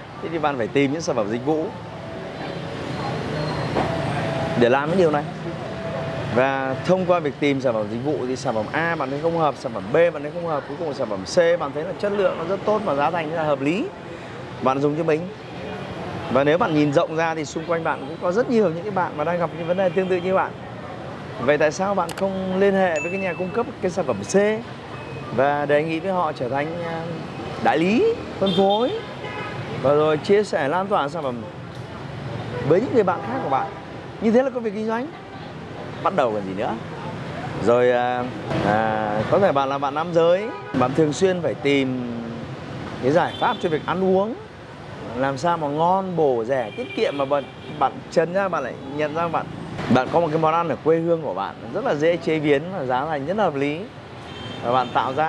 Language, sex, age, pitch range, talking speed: Vietnamese, male, 20-39, 135-180 Hz, 230 wpm